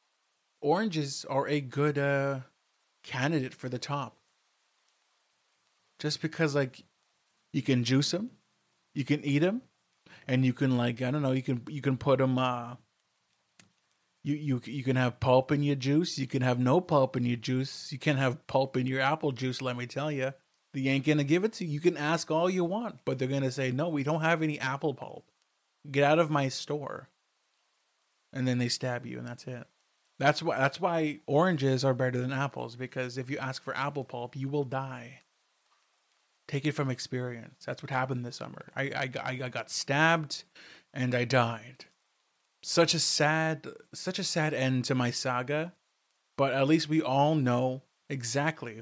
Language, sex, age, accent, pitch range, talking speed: English, male, 30-49, American, 130-150 Hz, 190 wpm